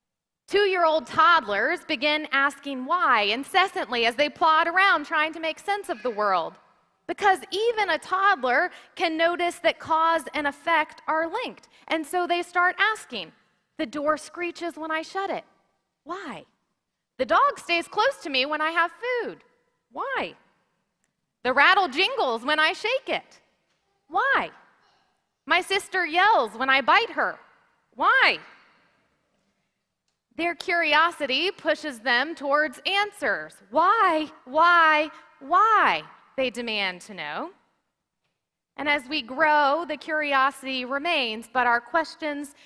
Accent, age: American, 30-49